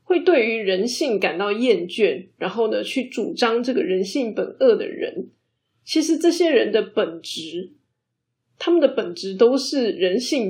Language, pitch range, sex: Chinese, 230-345 Hz, female